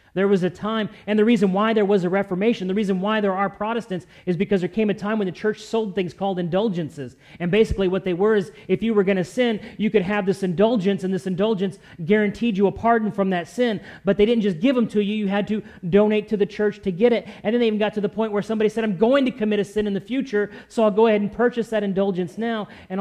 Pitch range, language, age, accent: 170-215 Hz, English, 40-59, American